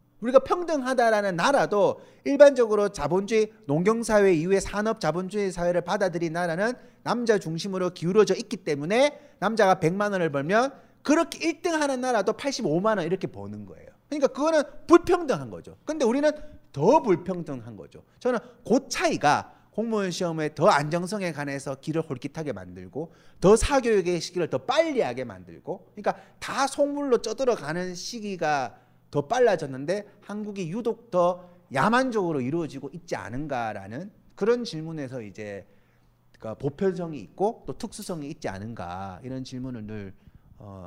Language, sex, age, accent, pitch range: Korean, male, 30-49, native, 145-230 Hz